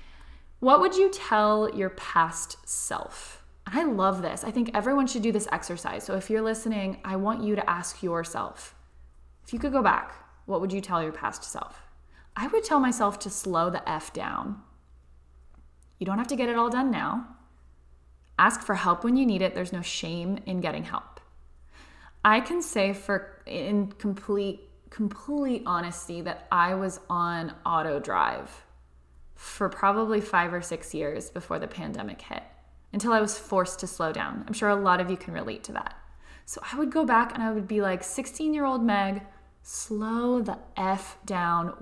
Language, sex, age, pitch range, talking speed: English, female, 20-39, 175-220 Hz, 185 wpm